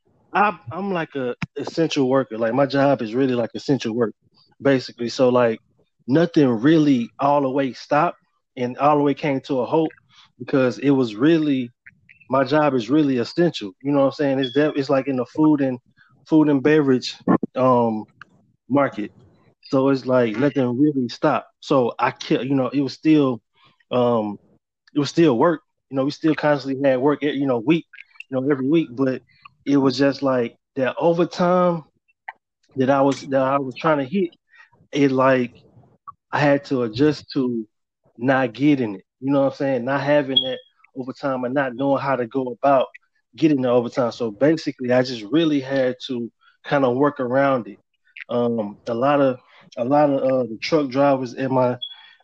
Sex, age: male, 20-39